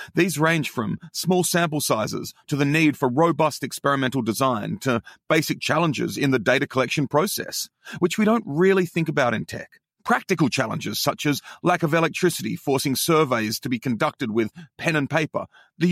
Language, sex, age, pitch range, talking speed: English, male, 40-59, 125-165 Hz, 175 wpm